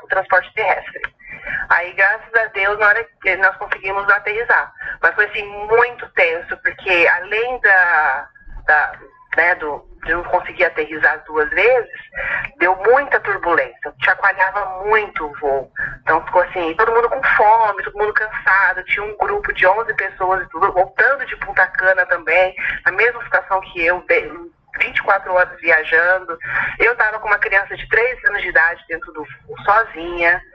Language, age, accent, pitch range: Portuguese, 30-49, Brazilian, 185-255 Hz